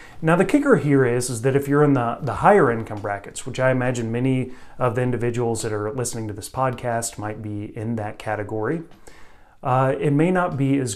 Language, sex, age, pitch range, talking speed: English, male, 30-49, 110-140 Hz, 215 wpm